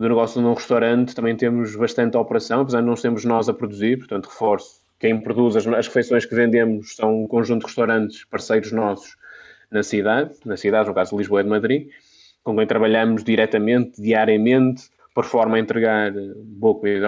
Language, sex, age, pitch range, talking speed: Portuguese, male, 20-39, 115-140 Hz, 185 wpm